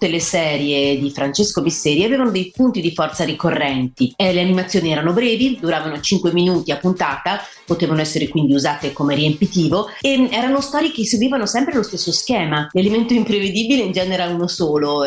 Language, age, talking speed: Italian, 30-49, 170 wpm